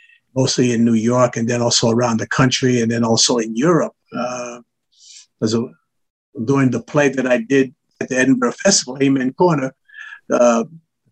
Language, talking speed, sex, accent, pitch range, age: English, 165 wpm, male, American, 125-150 Hz, 50-69